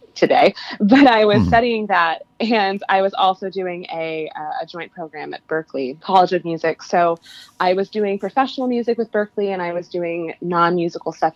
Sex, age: female, 20-39